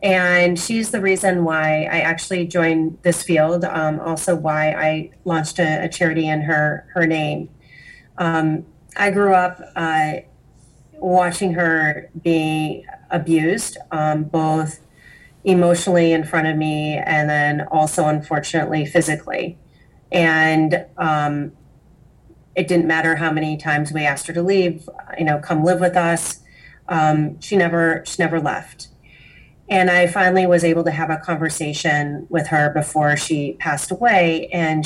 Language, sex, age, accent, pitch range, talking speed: English, female, 30-49, American, 150-175 Hz, 145 wpm